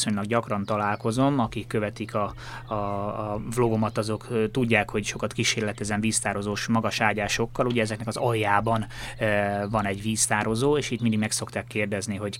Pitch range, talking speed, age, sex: 105-115 Hz, 145 wpm, 20-39, male